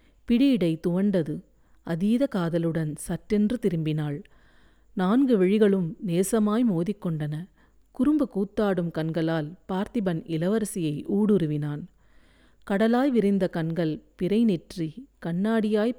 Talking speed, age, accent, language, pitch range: 80 wpm, 40-59, native, Tamil, 165-230 Hz